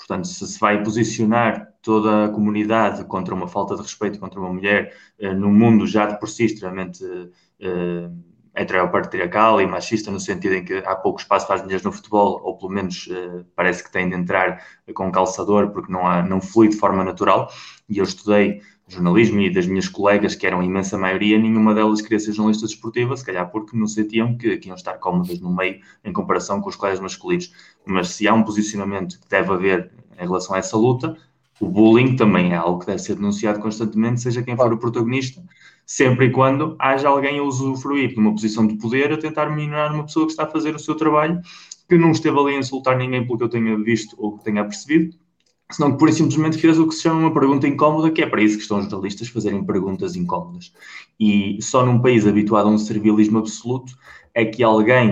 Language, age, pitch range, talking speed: Portuguese, 20-39, 100-130 Hz, 215 wpm